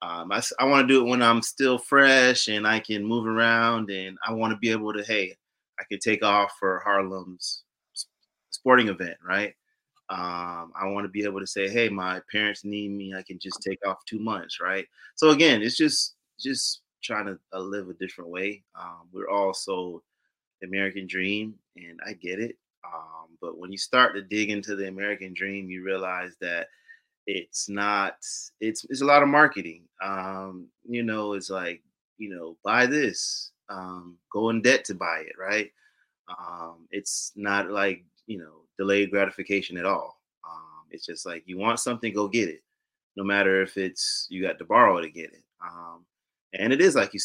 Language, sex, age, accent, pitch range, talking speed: English, male, 30-49, American, 95-120 Hz, 190 wpm